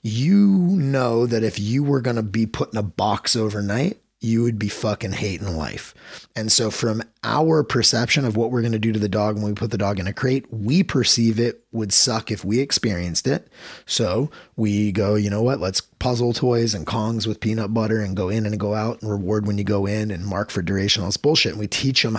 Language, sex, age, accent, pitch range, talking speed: English, male, 30-49, American, 105-120 Hz, 240 wpm